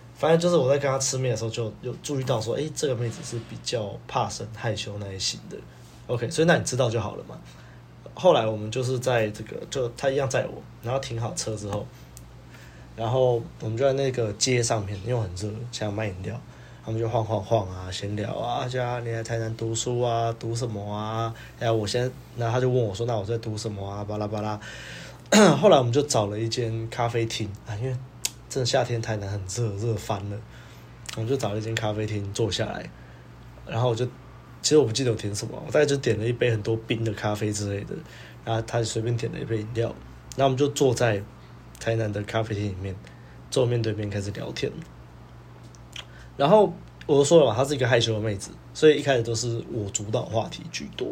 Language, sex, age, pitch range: Chinese, male, 20-39, 105-125 Hz